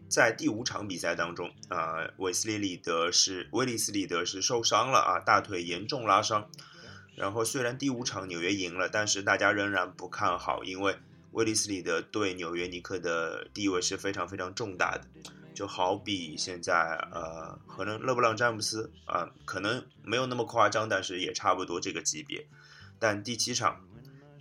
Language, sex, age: Chinese, male, 20-39